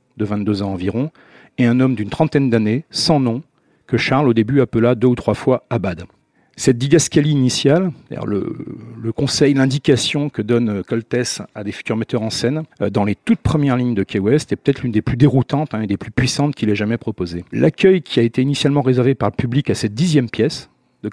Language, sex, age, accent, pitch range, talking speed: French, male, 50-69, French, 115-150 Hz, 215 wpm